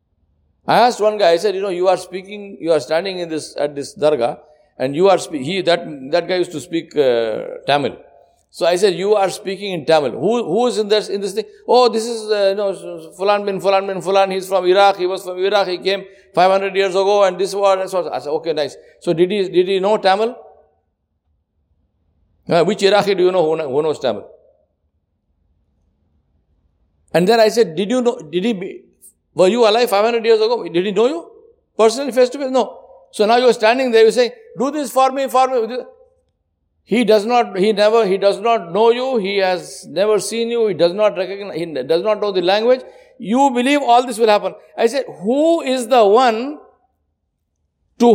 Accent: Indian